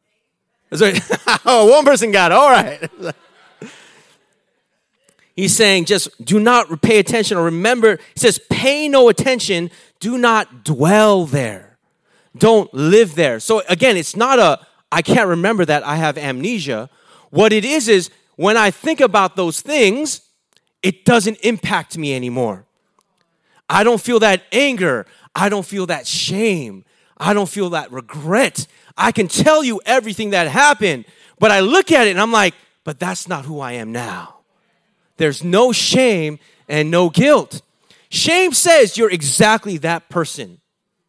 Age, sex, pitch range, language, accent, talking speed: 30-49, male, 170-240 Hz, English, American, 155 wpm